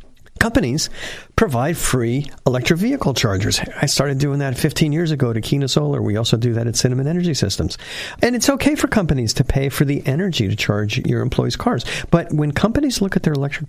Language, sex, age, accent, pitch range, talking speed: English, male, 50-69, American, 125-175 Hz, 200 wpm